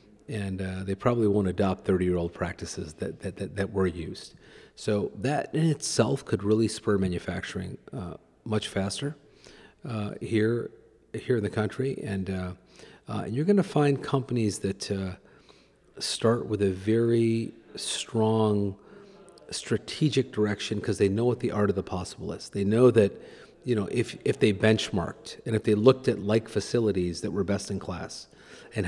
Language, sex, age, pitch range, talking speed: English, male, 40-59, 100-115 Hz, 165 wpm